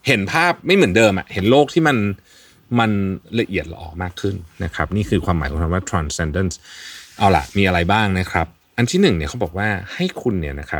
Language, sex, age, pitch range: Thai, male, 30-49, 85-115 Hz